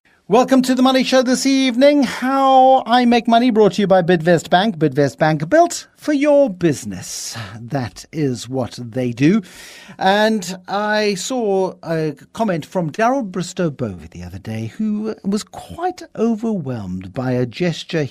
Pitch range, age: 135-205 Hz, 60-79